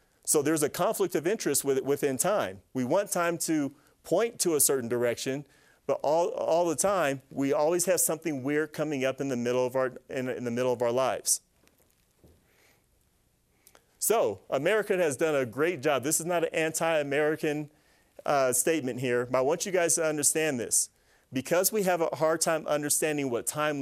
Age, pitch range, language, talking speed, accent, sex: 40-59, 135-170 Hz, English, 180 wpm, American, male